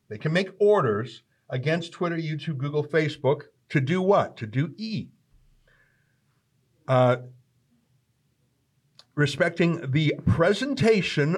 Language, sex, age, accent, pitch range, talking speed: English, male, 50-69, American, 125-165 Hz, 100 wpm